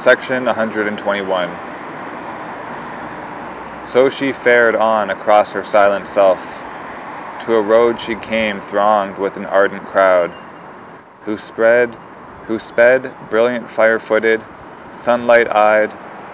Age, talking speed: 20-39, 100 wpm